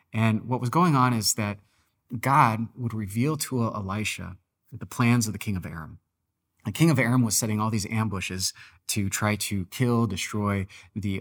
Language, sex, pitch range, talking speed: English, male, 100-125 Hz, 180 wpm